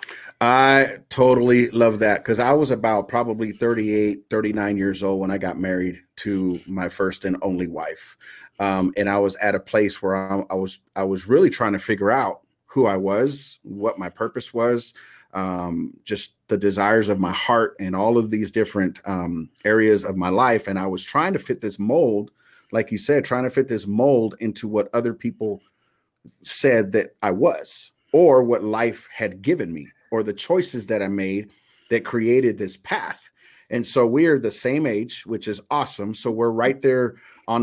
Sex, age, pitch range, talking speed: male, 40-59, 100-120 Hz, 190 wpm